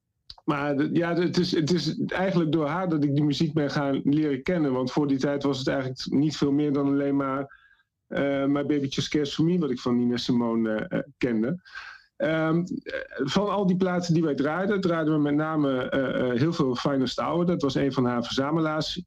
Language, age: Dutch, 50-69